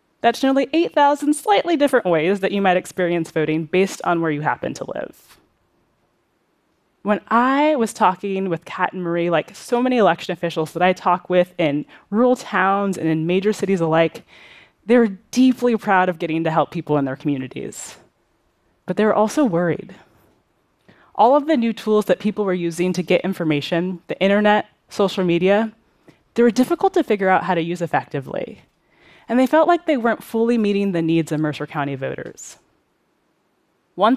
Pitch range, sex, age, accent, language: 170-225 Hz, female, 20-39, American, Korean